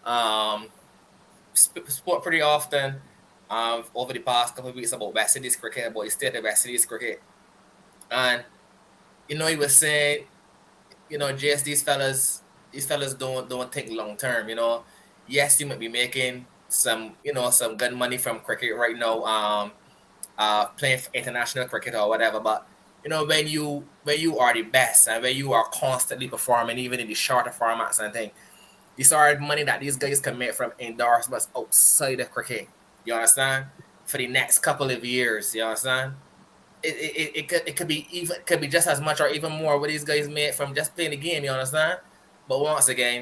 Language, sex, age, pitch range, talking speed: English, male, 20-39, 115-145 Hz, 195 wpm